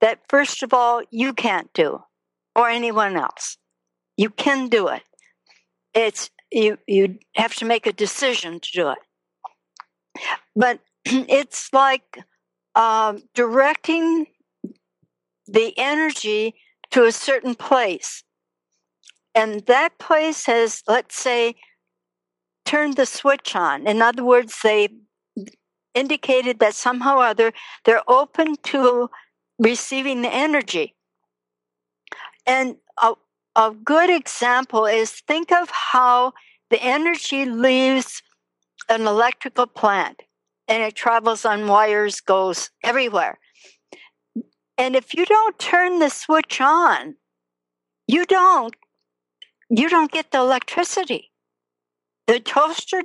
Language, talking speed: English, 115 wpm